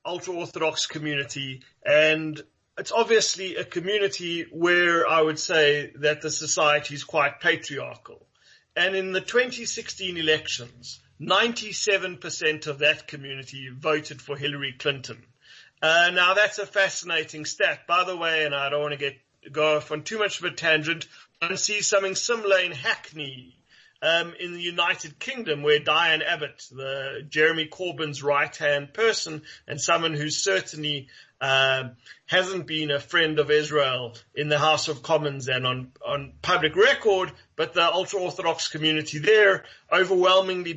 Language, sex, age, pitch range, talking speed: English, male, 40-59, 145-180 Hz, 145 wpm